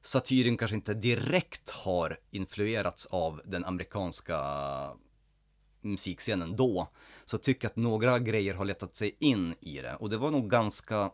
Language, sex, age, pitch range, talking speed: Swedish, male, 30-49, 85-105 Hz, 150 wpm